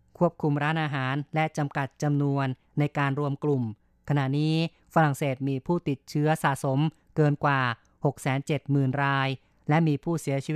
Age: 30-49